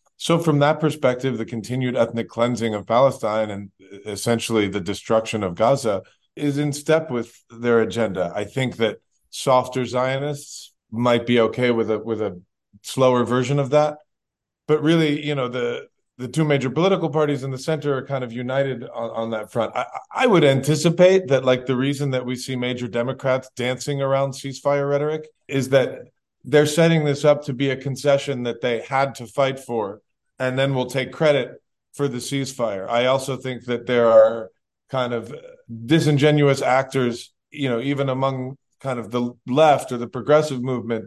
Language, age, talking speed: English, 40-59, 180 wpm